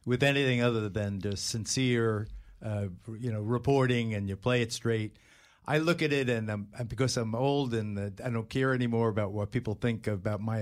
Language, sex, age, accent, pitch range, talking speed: English, male, 50-69, American, 110-130 Hz, 200 wpm